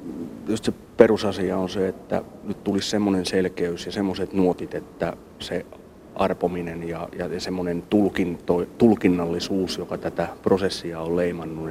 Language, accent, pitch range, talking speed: Finnish, native, 85-95 Hz, 130 wpm